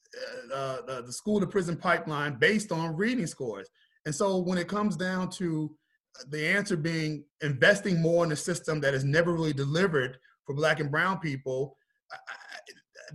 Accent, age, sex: American, 30-49, male